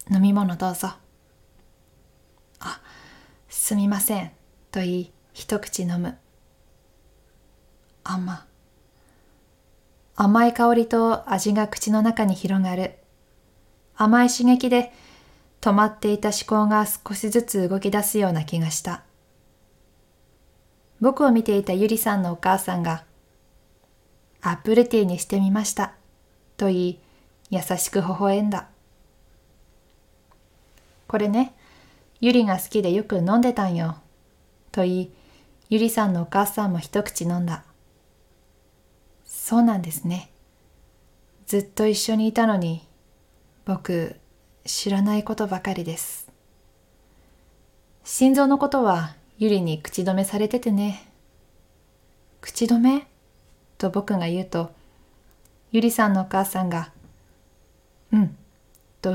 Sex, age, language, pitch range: female, 20-39, Japanese, 140-215 Hz